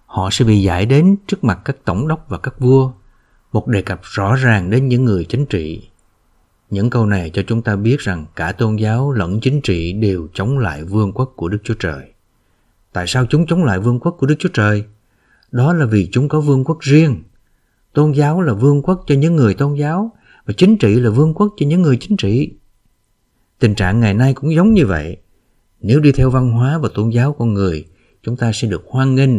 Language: Vietnamese